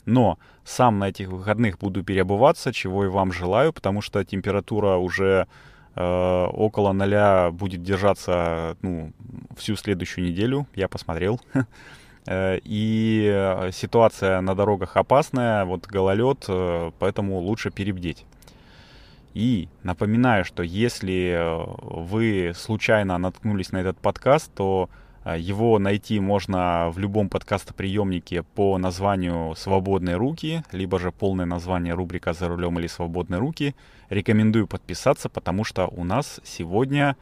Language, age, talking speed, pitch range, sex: Russian, 20-39, 120 wpm, 90-110 Hz, male